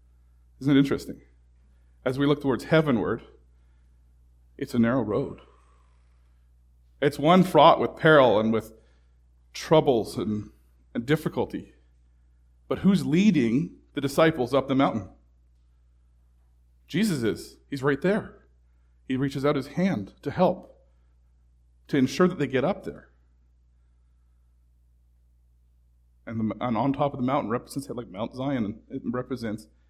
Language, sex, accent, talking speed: English, male, American, 130 wpm